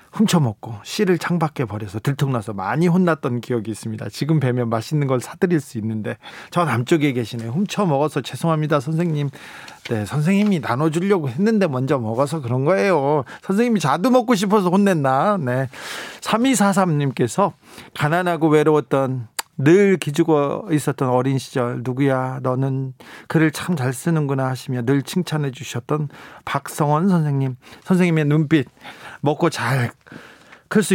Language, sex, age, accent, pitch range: Korean, male, 40-59, native, 130-165 Hz